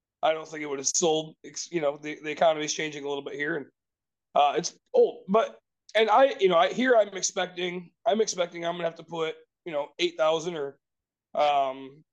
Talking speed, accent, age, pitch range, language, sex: 220 wpm, American, 30-49, 155-200 Hz, English, male